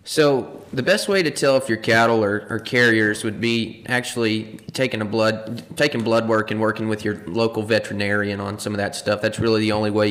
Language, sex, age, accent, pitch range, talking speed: English, male, 20-39, American, 105-115 Hz, 215 wpm